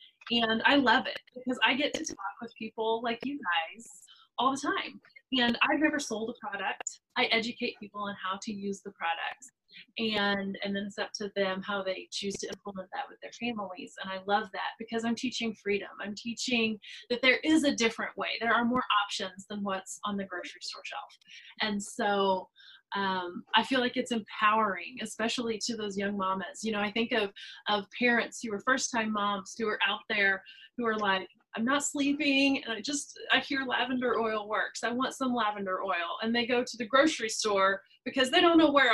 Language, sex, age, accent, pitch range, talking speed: English, female, 20-39, American, 200-255 Hz, 210 wpm